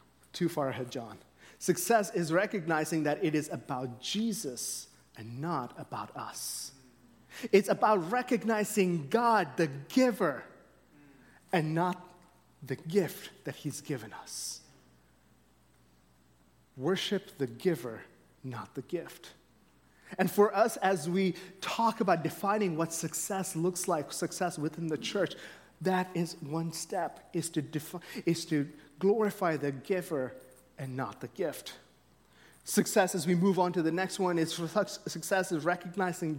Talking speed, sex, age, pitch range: 135 wpm, male, 30-49, 150-190 Hz